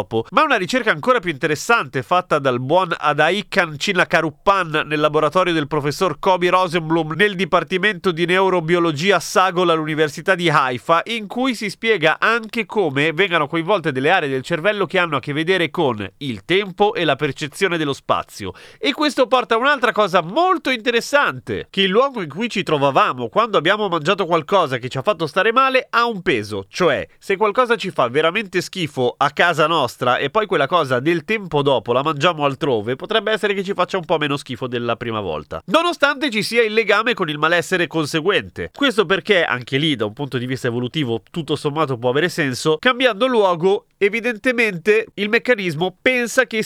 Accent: native